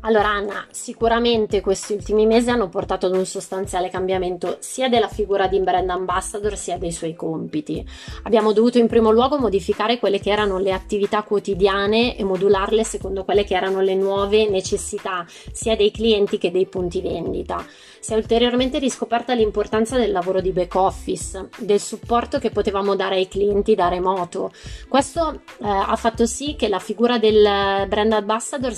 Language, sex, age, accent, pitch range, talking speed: Italian, female, 20-39, native, 190-225 Hz, 165 wpm